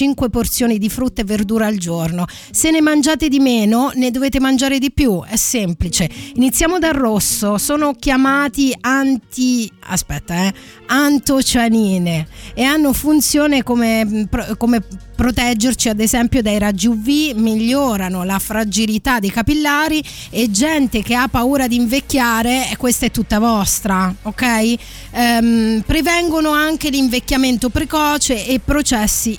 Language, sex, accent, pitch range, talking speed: Italian, female, native, 215-280 Hz, 130 wpm